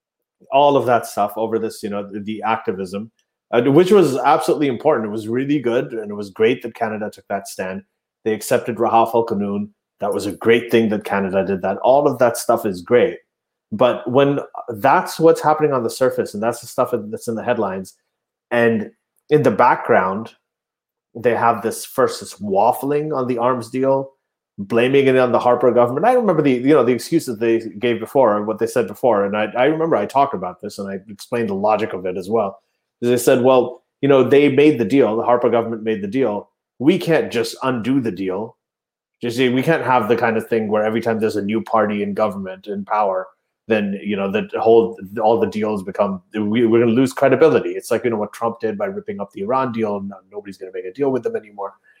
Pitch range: 105-135 Hz